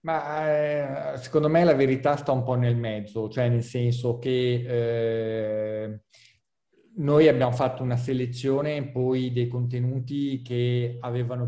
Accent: native